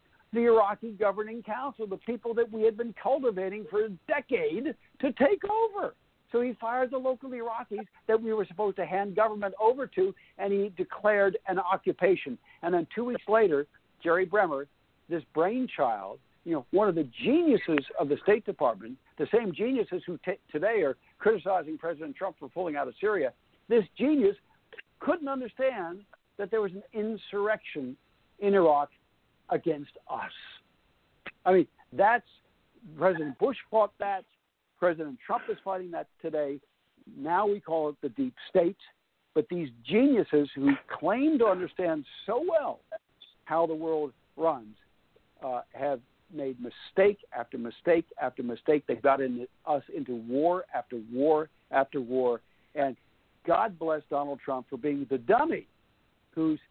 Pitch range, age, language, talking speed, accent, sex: 155-235 Hz, 60-79, English, 150 wpm, American, male